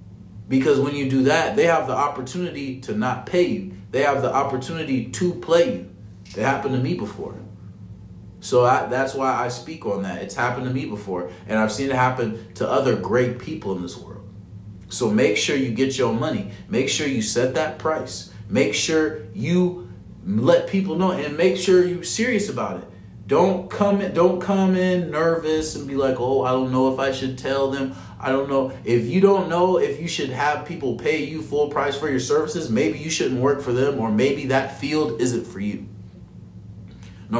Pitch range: 110-160 Hz